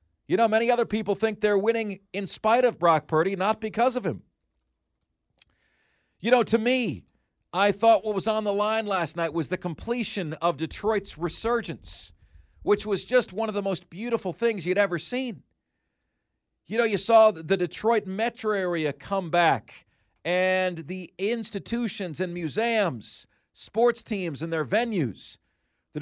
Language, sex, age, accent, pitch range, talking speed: English, male, 40-59, American, 165-220 Hz, 160 wpm